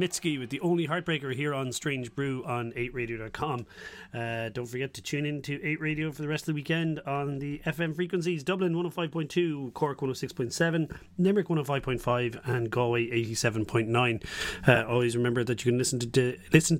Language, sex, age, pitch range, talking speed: English, male, 30-49, 115-145 Hz, 175 wpm